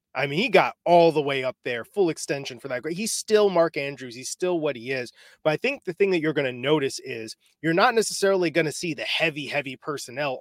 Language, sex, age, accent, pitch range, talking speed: English, male, 30-49, American, 140-175 Hz, 250 wpm